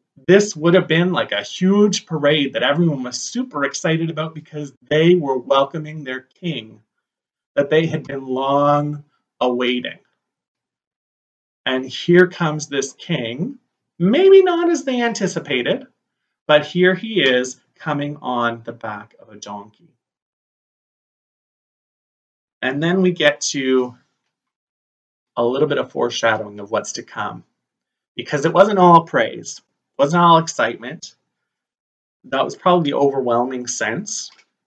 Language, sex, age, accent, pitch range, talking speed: English, male, 30-49, American, 130-185 Hz, 130 wpm